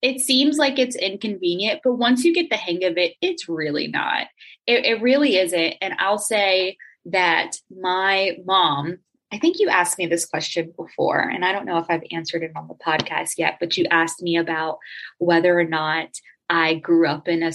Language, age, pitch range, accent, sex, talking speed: English, 20-39, 175-245 Hz, American, female, 200 wpm